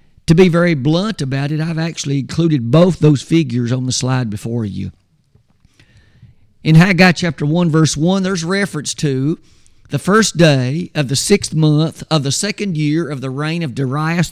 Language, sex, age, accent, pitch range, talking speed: English, male, 50-69, American, 125-170 Hz, 175 wpm